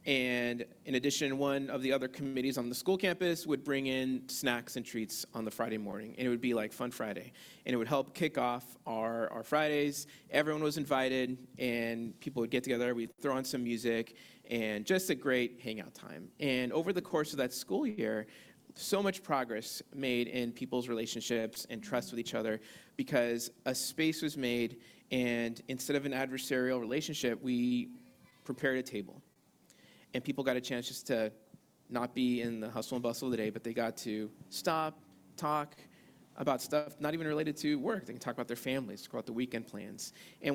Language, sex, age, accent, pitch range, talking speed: English, male, 30-49, American, 115-145 Hz, 200 wpm